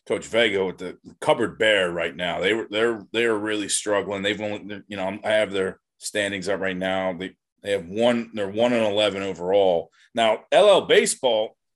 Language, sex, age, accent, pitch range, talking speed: English, male, 30-49, American, 100-115 Hz, 190 wpm